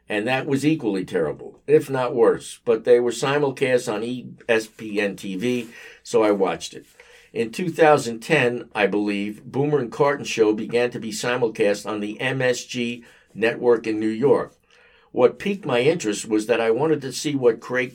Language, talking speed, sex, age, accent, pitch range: English, 165 wpm, male, 60-79, American, 120-180 Hz